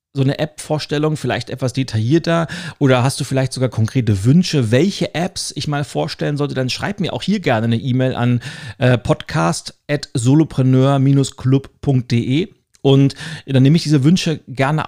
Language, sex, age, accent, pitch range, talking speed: German, male, 40-59, German, 120-150 Hz, 155 wpm